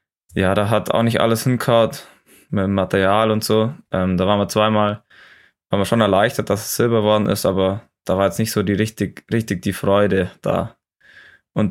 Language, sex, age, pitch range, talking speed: German, male, 20-39, 100-110 Hz, 200 wpm